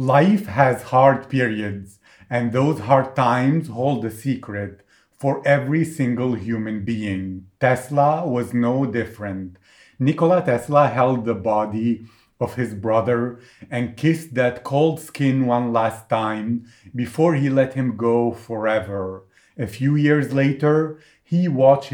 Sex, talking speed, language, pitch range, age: male, 130 wpm, English, 115-140 Hz, 40-59